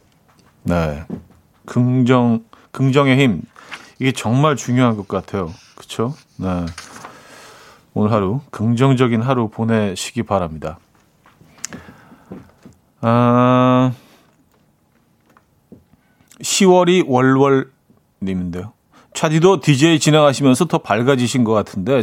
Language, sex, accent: Korean, male, native